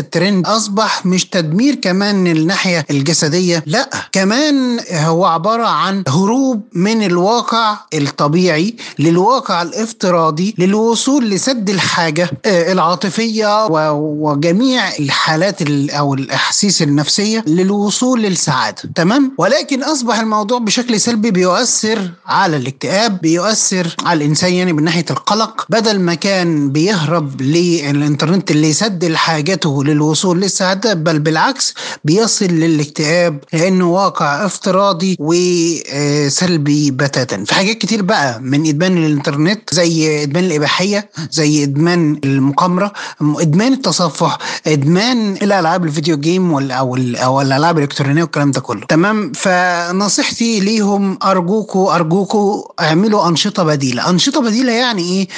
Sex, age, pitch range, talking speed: male, 30-49, 155-210 Hz, 110 wpm